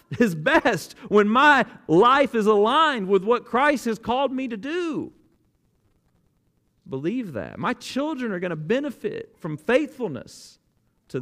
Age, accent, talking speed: 40-59, American, 140 wpm